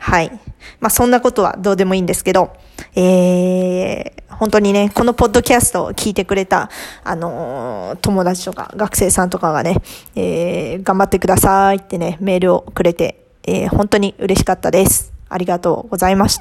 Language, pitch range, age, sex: Japanese, 185-245 Hz, 20-39, female